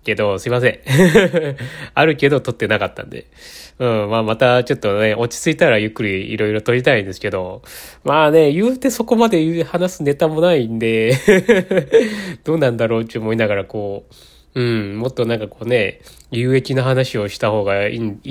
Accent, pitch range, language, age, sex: native, 110-145 Hz, Japanese, 20-39, male